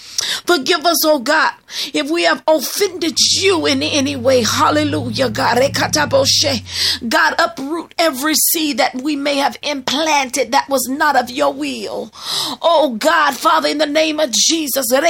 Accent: American